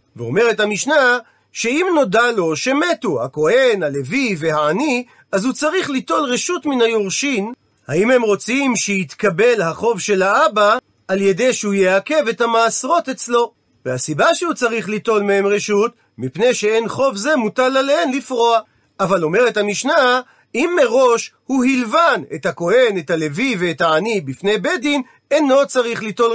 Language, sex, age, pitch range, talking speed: Hebrew, male, 40-59, 200-270 Hz, 140 wpm